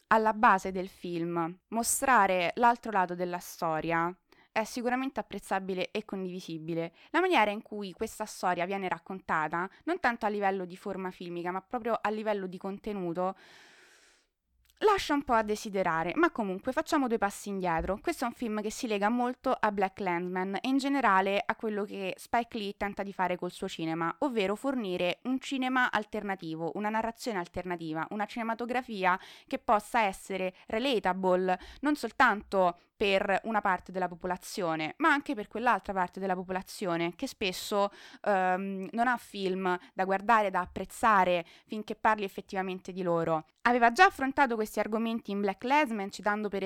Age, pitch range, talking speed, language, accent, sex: 20-39, 185-225 Hz, 160 wpm, Italian, native, female